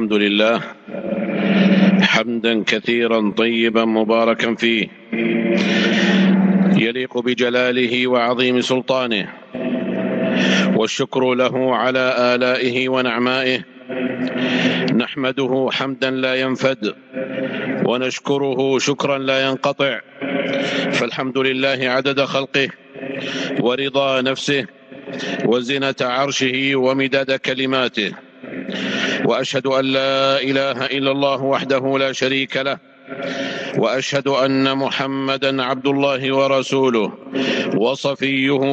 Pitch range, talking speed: 130-140 Hz, 80 wpm